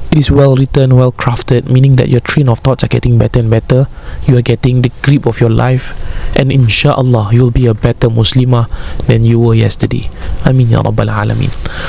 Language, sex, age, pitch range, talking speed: Malay, male, 20-39, 120-140 Hz, 205 wpm